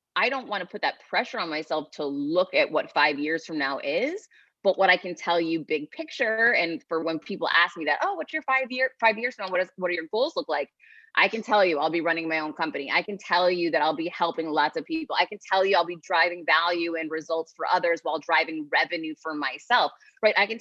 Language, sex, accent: English, female, American